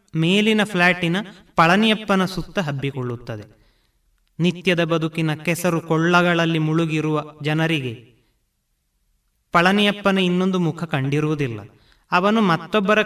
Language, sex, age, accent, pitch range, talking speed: Kannada, male, 30-49, native, 145-180 Hz, 80 wpm